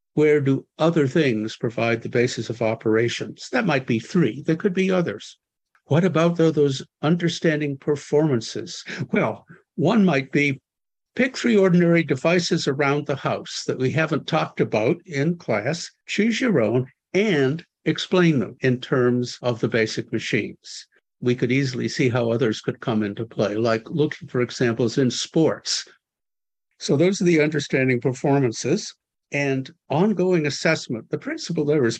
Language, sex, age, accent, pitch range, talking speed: English, male, 60-79, American, 125-175 Hz, 150 wpm